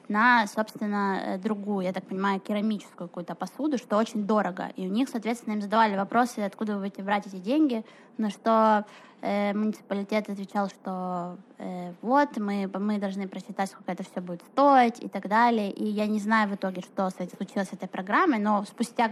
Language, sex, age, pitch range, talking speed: Russian, female, 20-39, 195-225 Hz, 185 wpm